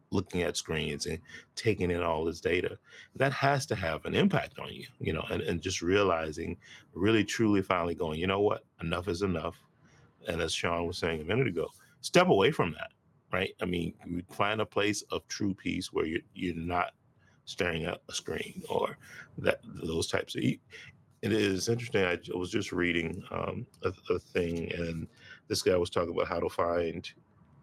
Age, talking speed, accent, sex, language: 40-59, 195 wpm, American, male, English